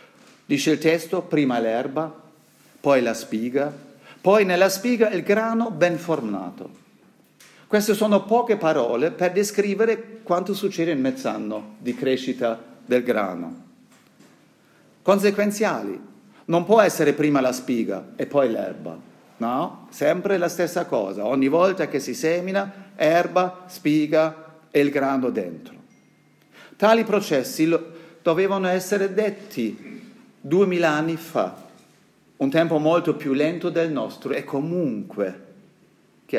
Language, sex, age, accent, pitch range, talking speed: Italian, male, 50-69, native, 135-195 Hz, 120 wpm